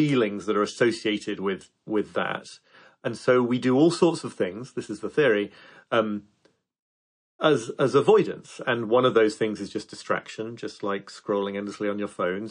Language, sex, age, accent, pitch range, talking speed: English, male, 30-49, British, 105-130 Hz, 180 wpm